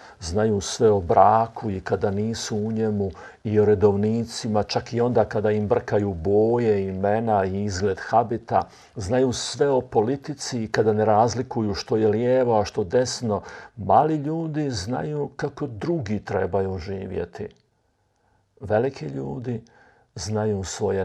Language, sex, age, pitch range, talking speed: Croatian, male, 50-69, 100-120 Hz, 135 wpm